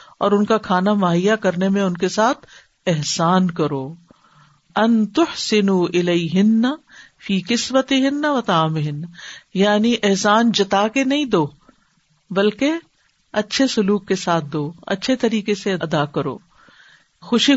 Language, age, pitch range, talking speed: Urdu, 50-69, 180-235 Hz, 125 wpm